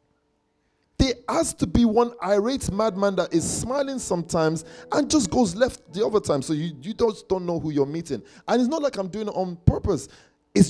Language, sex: English, male